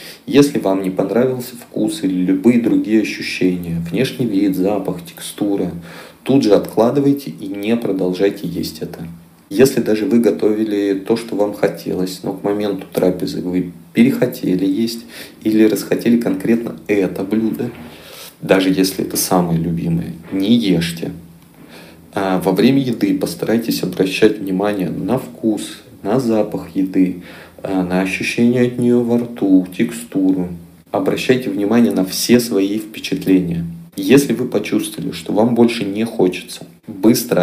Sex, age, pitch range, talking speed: male, 40-59, 90-115 Hz, 130 wpm